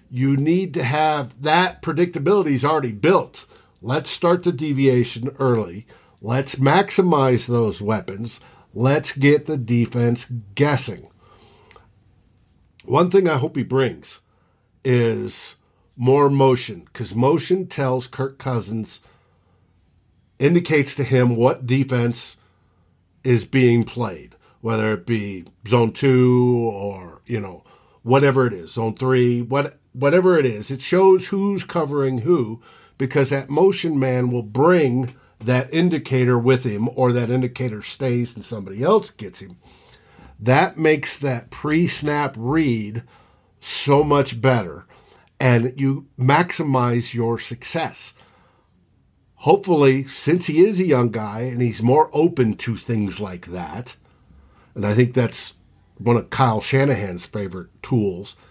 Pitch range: 115-140 Hz